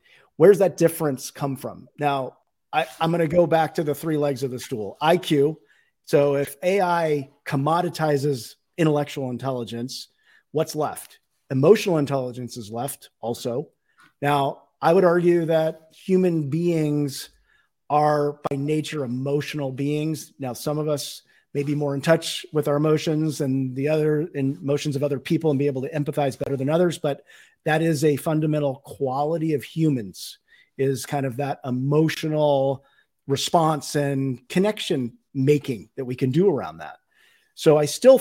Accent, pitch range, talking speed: American, 140-165 Hz, 150 wpm